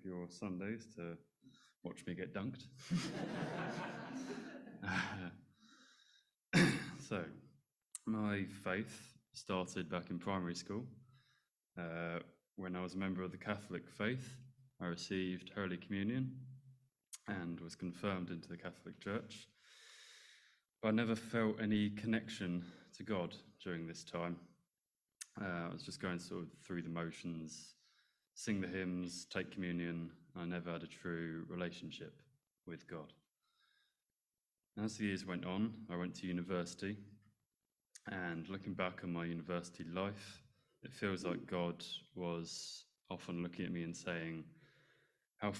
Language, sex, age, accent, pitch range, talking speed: English, male, 20-39, British, 85-105 Hz, 135 wpm